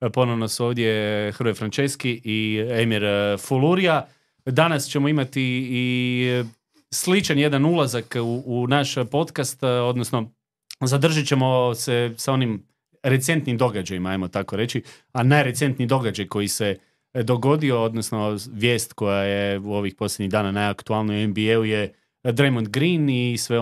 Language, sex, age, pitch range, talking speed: Croatian, male, 30-49, 115-135 Hz, 130 wpm